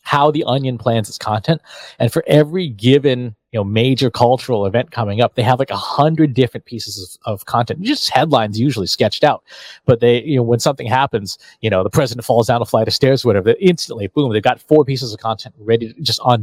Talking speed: 225 wpm